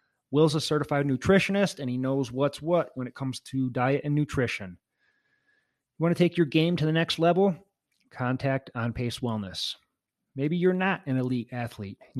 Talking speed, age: 180 wpm, 30-49